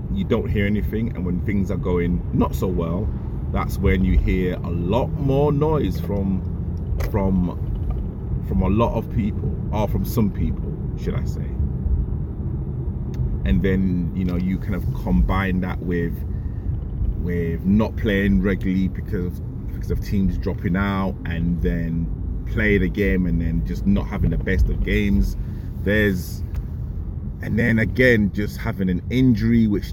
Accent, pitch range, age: British, 85-105 Hz, 30-49